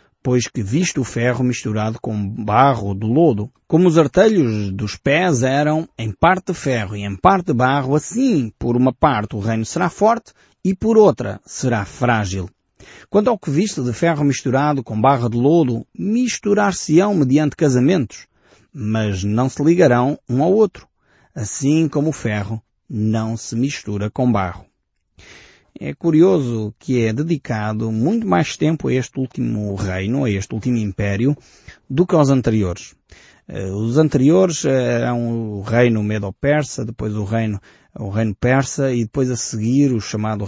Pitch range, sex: 105-140 Hz, male